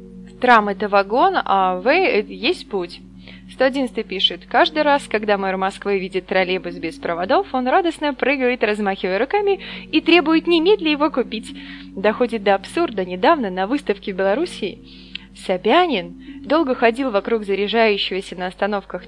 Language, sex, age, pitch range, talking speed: Russian, female, 20-39, 190-260 Hz, 135 wpm